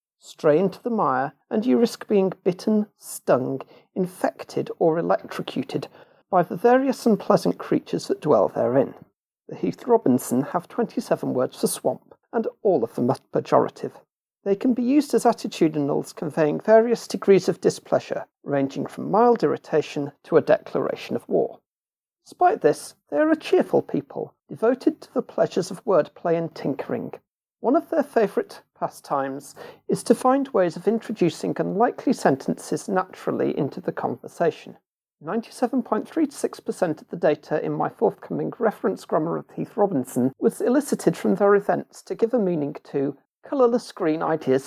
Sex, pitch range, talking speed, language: male, 170-250 Hz, 150 wpm, English